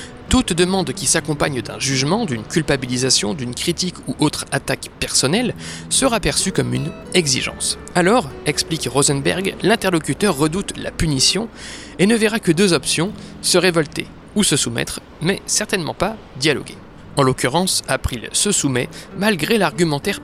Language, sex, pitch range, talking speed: French, male, 135-195 Hz, 140 wpm